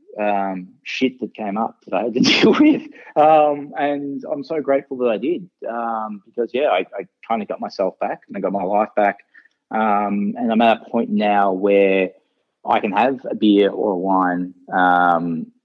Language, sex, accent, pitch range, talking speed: English, male, Australian, 100-140 Hz, 200 wpm